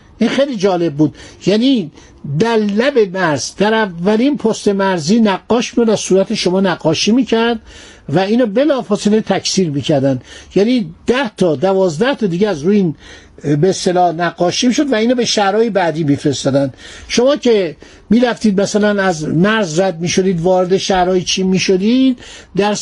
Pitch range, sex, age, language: 170-230 Hz, male, 60-79, Persian